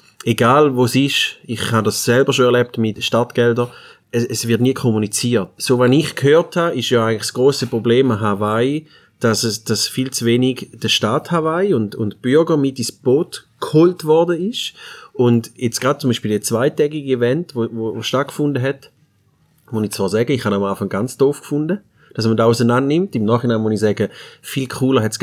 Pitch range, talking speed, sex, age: 115-145 Hz, 200 wpm, male, 30-49